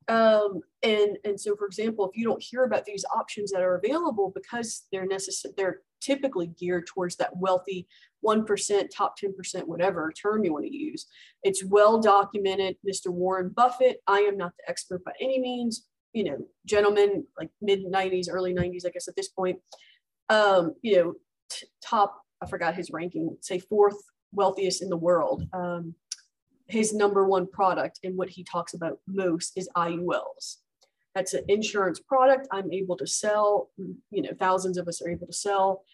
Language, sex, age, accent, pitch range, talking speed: English, female, 30-49, American, 180-205 Hz, 180 wpm